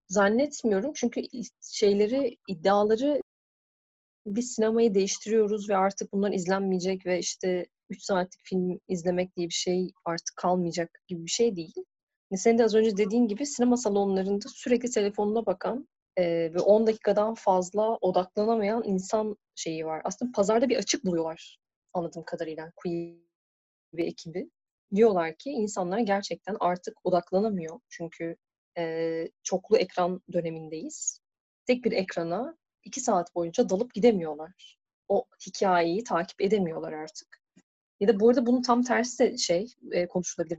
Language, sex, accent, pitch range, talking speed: Turkish, female, native, 175-230 Hz, 130 wpm